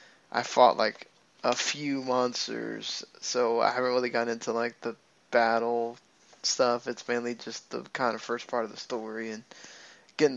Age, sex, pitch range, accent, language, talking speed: 20-39, male, 120-135 Hz, American, English, 170 wpm